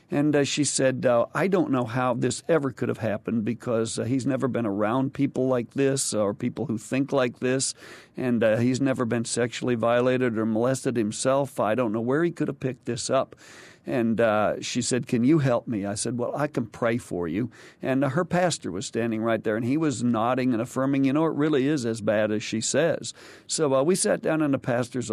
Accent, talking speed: American, 230 wpm